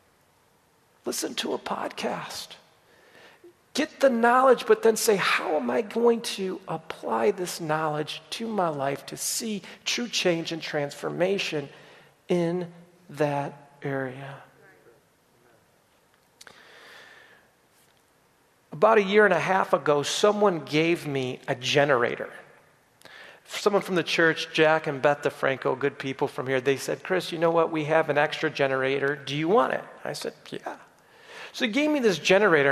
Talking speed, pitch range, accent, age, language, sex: 145 wpm, 150-205 Hz, American, 40-59, English, male